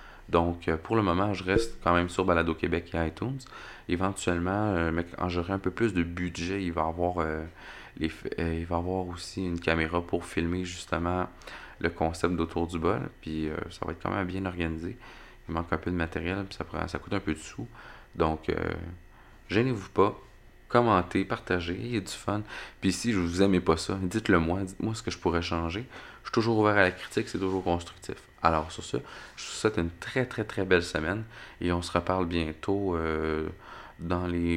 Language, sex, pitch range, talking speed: French, male, 85-100 Hz, 205 wpm